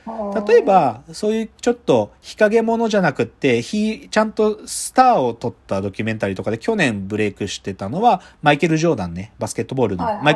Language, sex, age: Japanese, male, 40-59